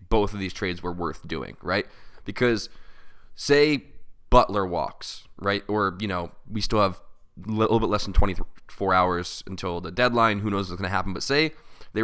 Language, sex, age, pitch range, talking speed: English, male, 20-39, 90-105 Hz, 185 wpm